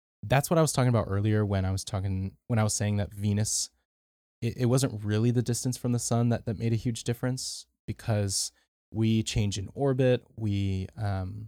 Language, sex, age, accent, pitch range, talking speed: English, male, 20-39, American, 95-115 Hz, 205 wpm